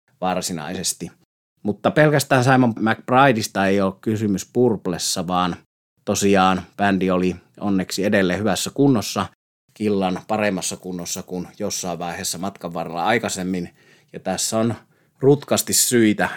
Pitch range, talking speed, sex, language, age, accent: 90-105 Hz, 115 wpm, male, Finnish, 30-49, native